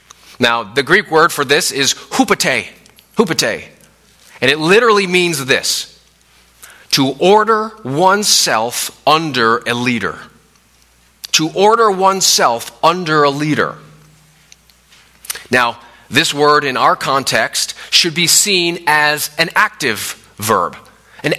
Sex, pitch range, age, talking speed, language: male, 135-180 Hz, 30-49, 110 wpm, English